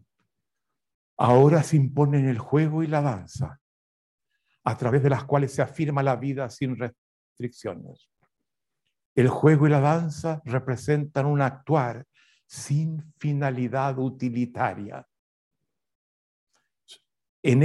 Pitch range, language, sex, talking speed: 120-150 Hz, Spanish, male, 105 wpm